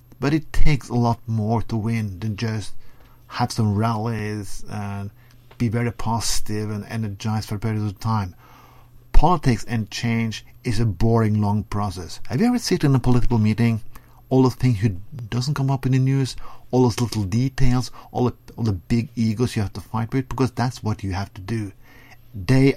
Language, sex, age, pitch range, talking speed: English, male, 50-69, 110-125 Hz, 190 wpm